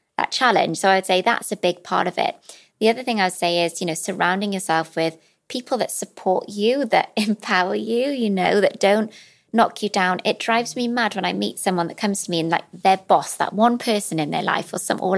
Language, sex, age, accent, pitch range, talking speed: English, female, 20-39, British, 175-215 Hz, 235 wpm